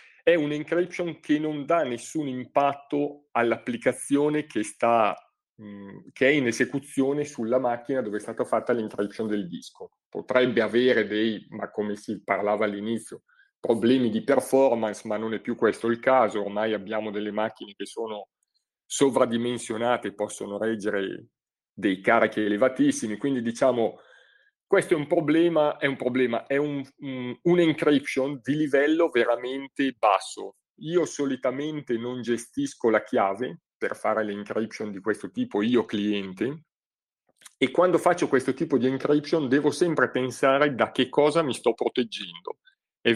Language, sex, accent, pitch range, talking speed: Italian, male, native, 110-150 Hz, 140 wpm